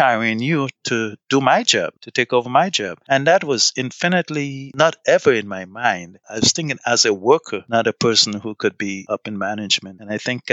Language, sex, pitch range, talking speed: English, male, 100-125 Hz, 215 wpm